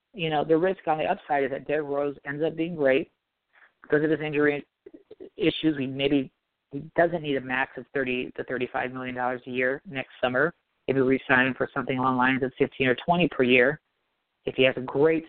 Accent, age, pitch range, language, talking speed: American, 40-59, 135-155 Hz, English, 220 wpm